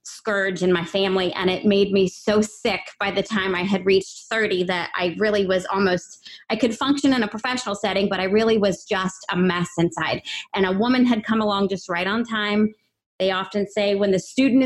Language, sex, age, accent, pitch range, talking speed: English, female, 30-49, American, 195-240 Hz, 215 wpm